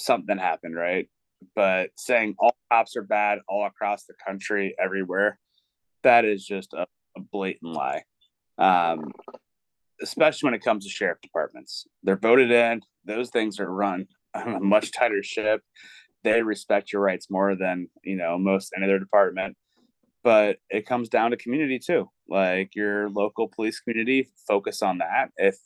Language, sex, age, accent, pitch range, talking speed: English, male, 30-49, American, 95-120 Hz, 160 wpm